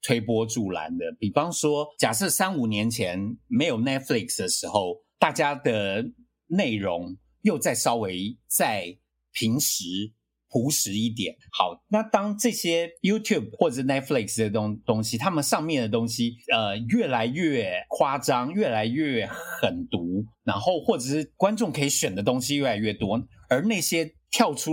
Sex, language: male, Chinese